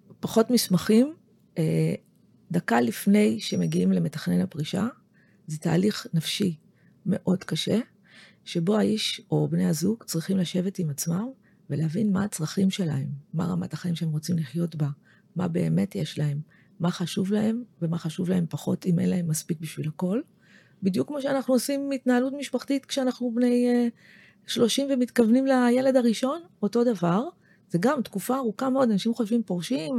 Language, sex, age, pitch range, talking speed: Hebrew, female, 30-49, 175-235 Hz, 140 wpm